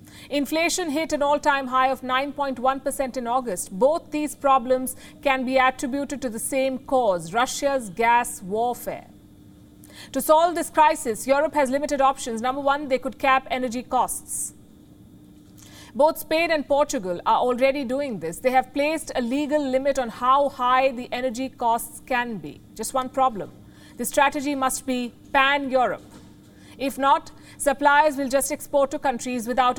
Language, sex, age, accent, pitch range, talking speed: English, female, 50-69, Indian, 250-285 Hz, 155 wpm